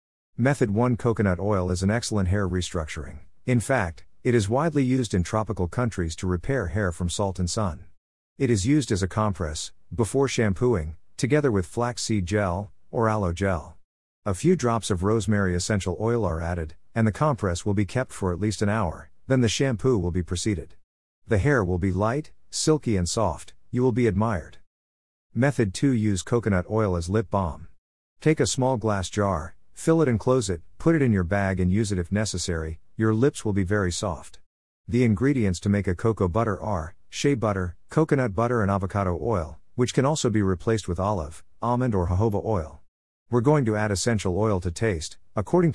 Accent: American